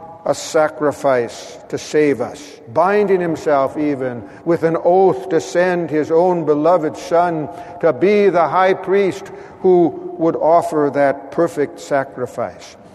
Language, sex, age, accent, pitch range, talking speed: English, male, 60-79, American, 140-180 Hz, 130 wpm